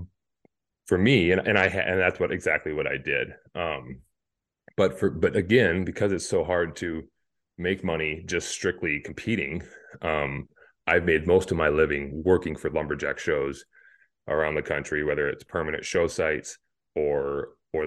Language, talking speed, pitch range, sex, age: English, 160 wpm, 75-105 Hz, male, 30-49